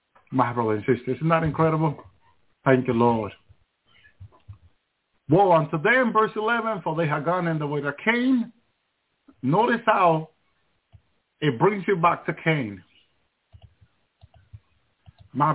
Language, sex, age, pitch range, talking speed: English, male, 50-69, 130-185 Hz, 125 wpm